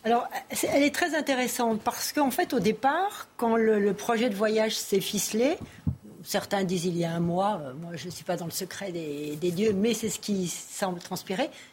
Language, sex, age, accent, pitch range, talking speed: French, female, 60-79, French, 205-290 Hz, 215 wpm